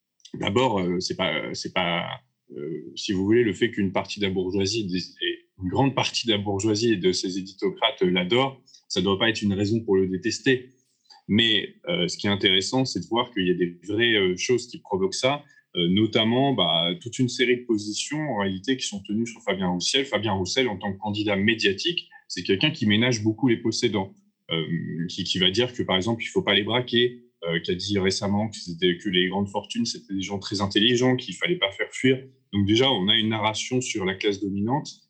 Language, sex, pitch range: French, male, 95-125 Hz